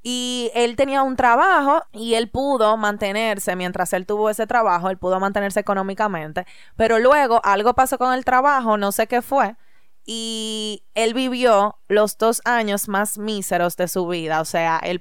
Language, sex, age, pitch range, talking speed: Spanish, female, 20-39, 195-245 Hz, 170 wpm